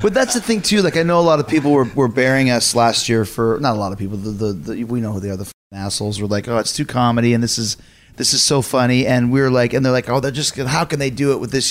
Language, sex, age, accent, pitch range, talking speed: English, male, 30-49, American, 110-140 Hz, 330 wpm